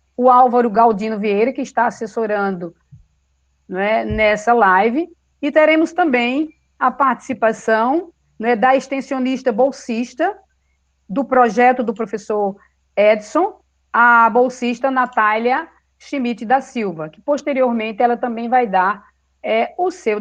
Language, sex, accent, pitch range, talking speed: Portuguese, female, Brazilian, 205-265 Hz, 115 wpm